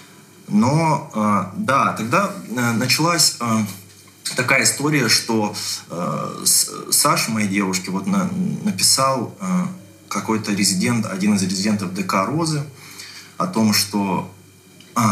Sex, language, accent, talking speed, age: male, Russian, native, 110 wpm, 20-39